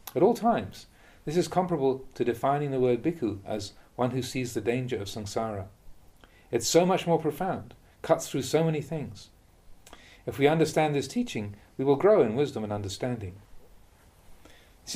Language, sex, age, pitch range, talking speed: English, male, 40-59, 110-160 Hz, 170 wpm